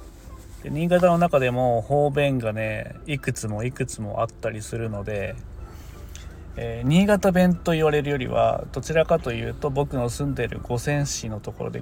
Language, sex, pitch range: Japanese, male, 110-155 Hz